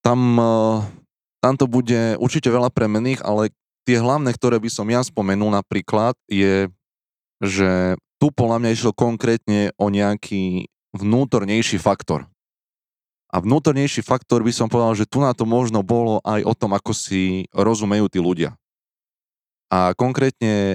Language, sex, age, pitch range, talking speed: Slovak, male, 20-39, 95-115 Hz, 140 wpm